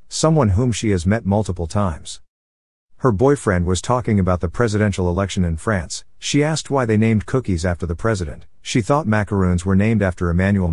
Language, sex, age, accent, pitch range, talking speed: English, male, 50-69, American, 90-115 Hz, 185 wpm